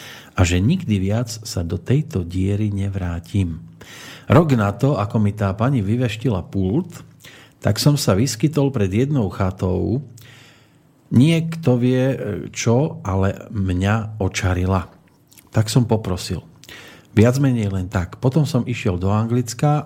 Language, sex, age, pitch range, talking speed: Slovak, male, 40-59, 105-145 Hz, 130 wpm